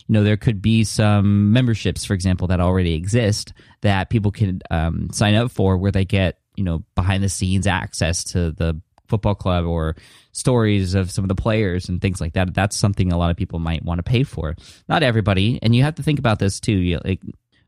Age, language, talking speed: 20-39, English, 220 wpm